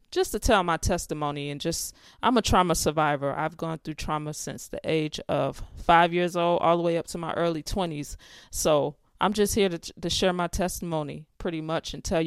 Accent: American